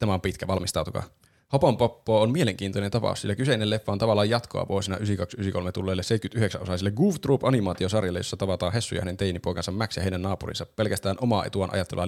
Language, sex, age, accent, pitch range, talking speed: Finnish, male, 20-39, native, 95-120 Hz, 175 wpm